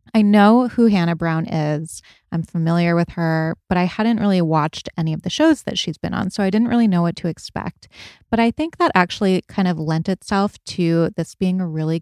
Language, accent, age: English, American, 20-39